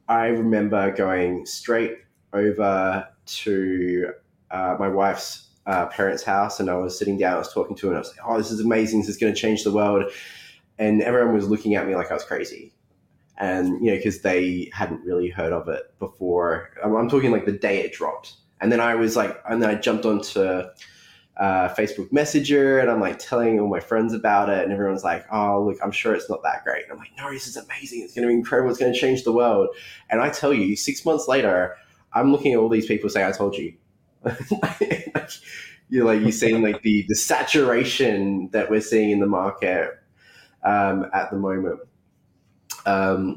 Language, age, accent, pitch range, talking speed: English, 20-39, Australian, 95-115 Hz, 210 wpm